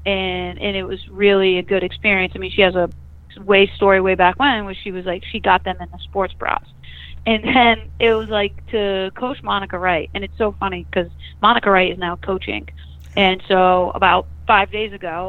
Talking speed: 210 wpm